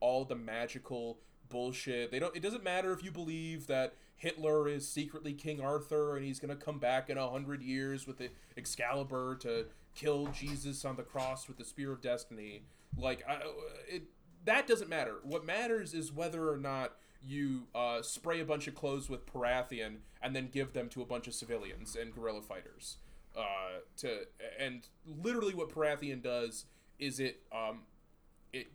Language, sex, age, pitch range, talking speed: English, male, 20-39, 115-150 Hz, 175 wpm